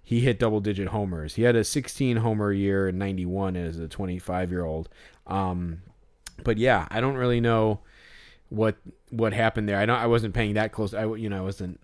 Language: English